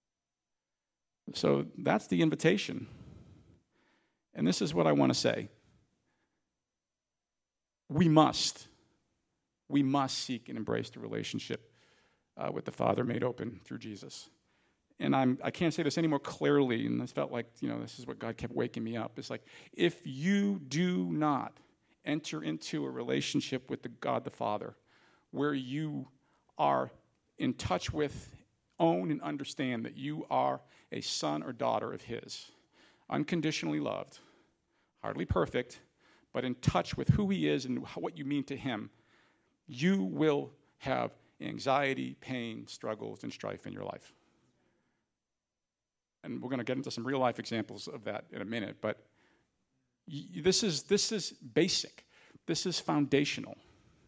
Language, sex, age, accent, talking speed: English, male, 50-69, American, 150 wpm